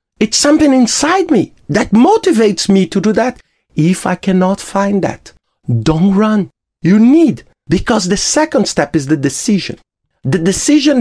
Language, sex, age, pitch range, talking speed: English, male, 50-69, 150-220 Hz, 155 wpm